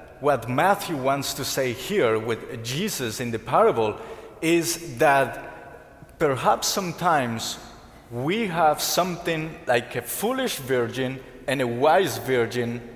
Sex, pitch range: male, 125-180 Hz